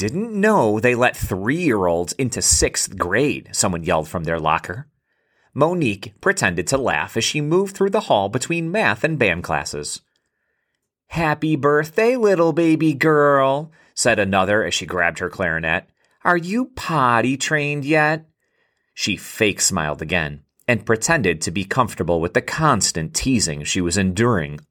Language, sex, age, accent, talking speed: English, male, 30-49, American, 150 wpm